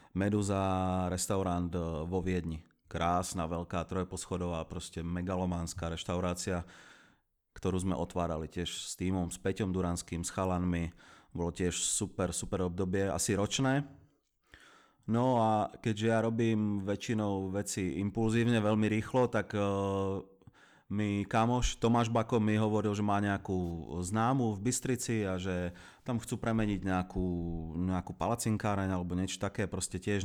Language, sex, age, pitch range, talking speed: Czech, male, 30-49, 90-110 Hz, 125 wpm